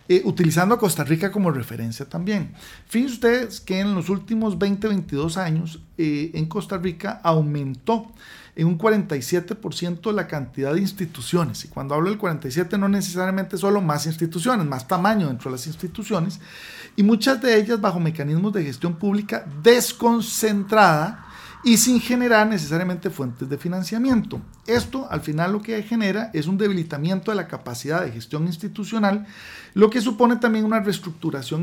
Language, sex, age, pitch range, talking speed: Spanish, male, 40-59, 160-210 Hz, 155 wpm